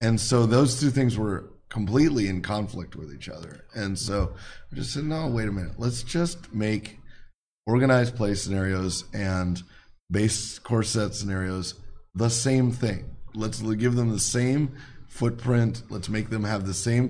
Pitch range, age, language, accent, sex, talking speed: 100-115 Hz, 30-49, English, American, male, 165 wpm